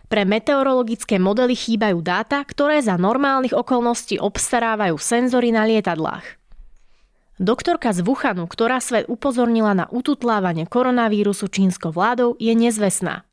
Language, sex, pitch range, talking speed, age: Slovak, female, 195-235 Hz, 115 wpm, 20-39